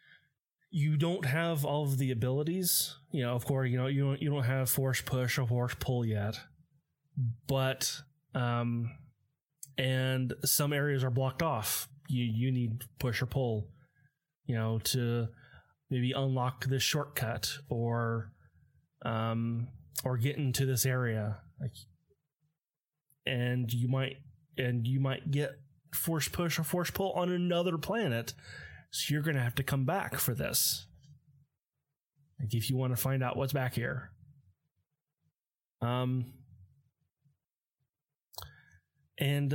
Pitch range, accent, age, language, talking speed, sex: 125-145 Hz, American, 20-39, English, 135 wpm, male